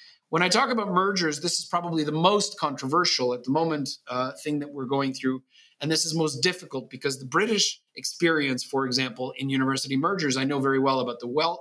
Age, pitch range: 40-59, 140-175 Hz